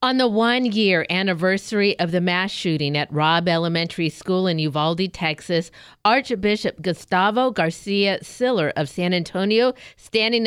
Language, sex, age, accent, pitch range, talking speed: English, female, 50-69, American, 175-215 Hz, 130 wpm